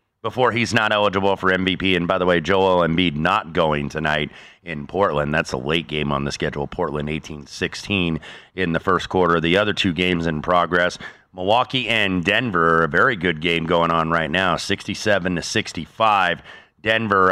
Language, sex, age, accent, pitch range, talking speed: English, male, 30-49, American, 85-110 Hz, 175 wpm